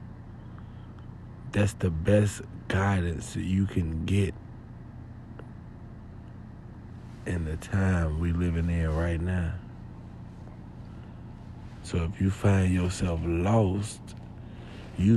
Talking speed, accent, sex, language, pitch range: 90 wpm, American, male, English, 95-115 Hz